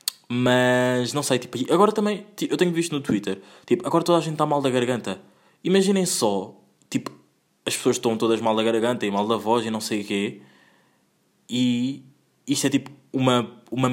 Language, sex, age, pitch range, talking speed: Portuguese, male, 20-39, 110-135 Hz, 195 wpm